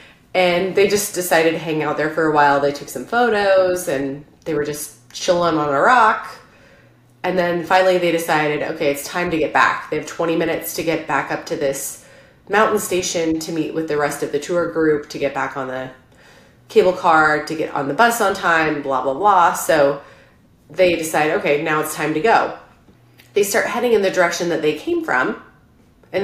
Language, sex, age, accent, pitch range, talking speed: English, female, 30-49, American, 150-185 Hz, 210 wpm